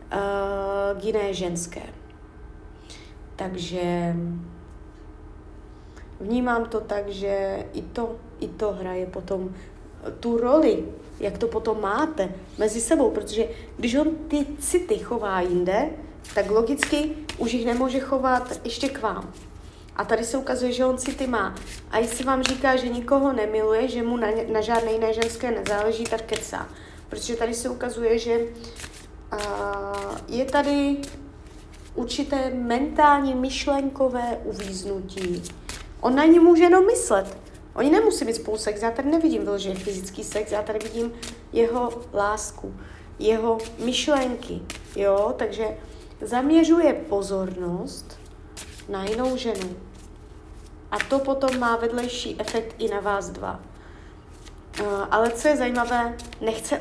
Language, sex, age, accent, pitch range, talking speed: Czech, female, 30-49, native, 200-255 Hz, 130 wpm